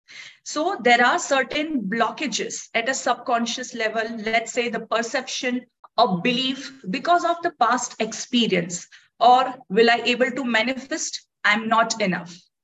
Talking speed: 140 wpm